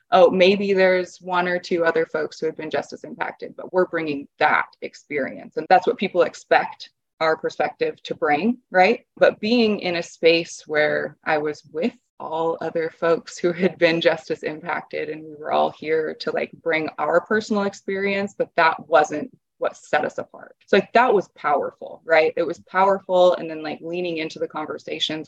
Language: English